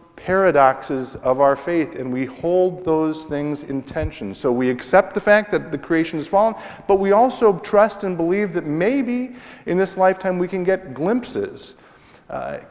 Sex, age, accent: male, 50-69, American